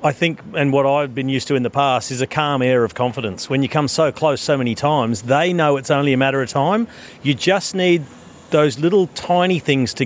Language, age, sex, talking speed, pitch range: English, 40-59, male, 245 wpm, 120-145 Hz